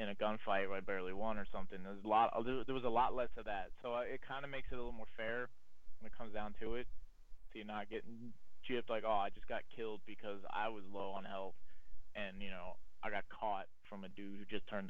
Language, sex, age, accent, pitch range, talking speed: English, male, 20-39, American, 95-115 Hz, 260 wpm